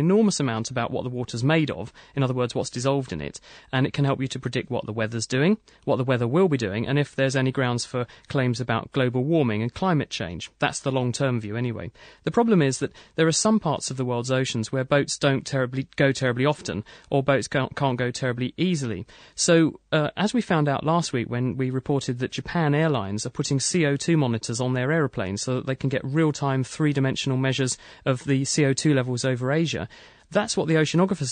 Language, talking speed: English, 220 wpm